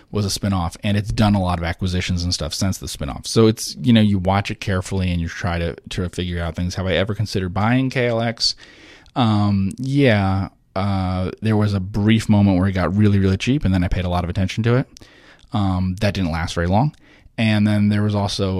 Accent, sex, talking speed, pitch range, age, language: American, male, 230 wpm, 85-105 Hz, 30-49, English